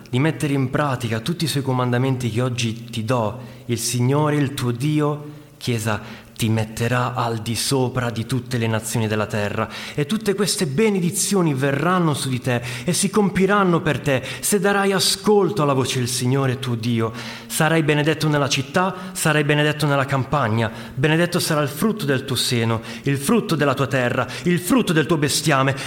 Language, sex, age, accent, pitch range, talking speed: Italian, male, 30-49, native, 115-170 Hz, 175 wpm